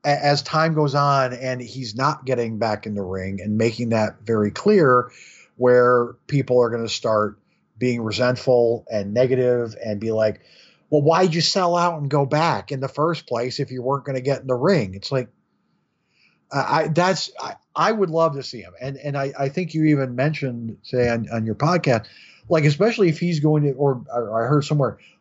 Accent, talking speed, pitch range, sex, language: American, 205 wpm, 120-160 Hz, male, English